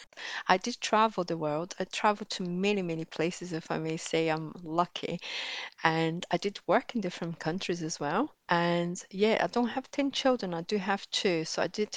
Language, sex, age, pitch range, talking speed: English, female, 40-59, 170-200 Hz, 200 wpm